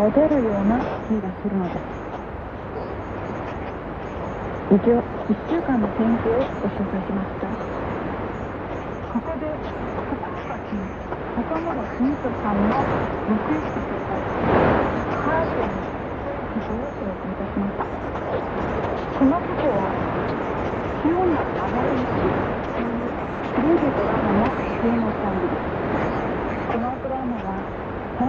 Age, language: 40-59, Korean